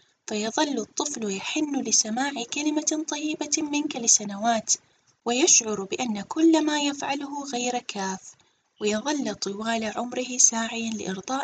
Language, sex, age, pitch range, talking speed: Arabic, female, 20-39, 200-260 Hz, 105 wpm